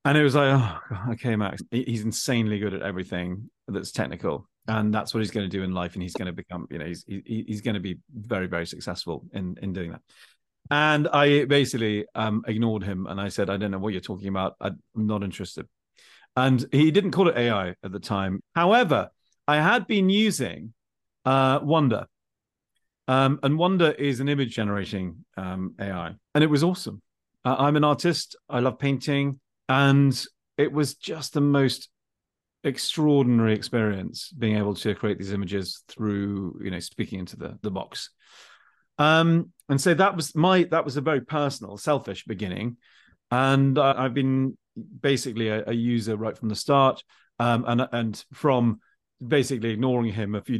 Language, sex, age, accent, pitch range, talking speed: English, male, 40-59, British, 105-140 Hz, 185 wpm